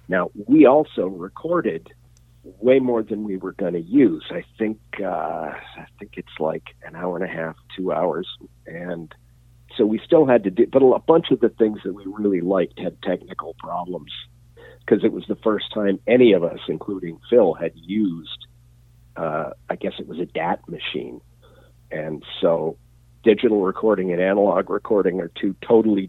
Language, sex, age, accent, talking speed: English, male, 50-69, American, 175 wpm